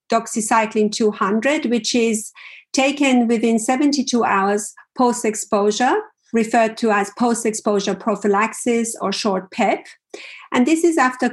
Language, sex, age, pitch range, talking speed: English, female, 50-69, 205-255 Hz, 110 wpm